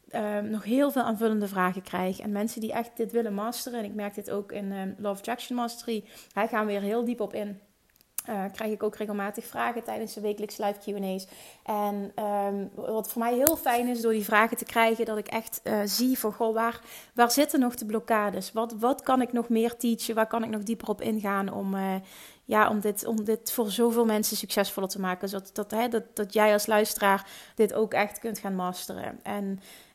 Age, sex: 30-49, female